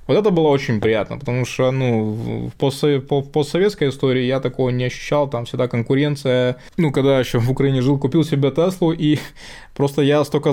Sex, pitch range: male, 125-145 Hz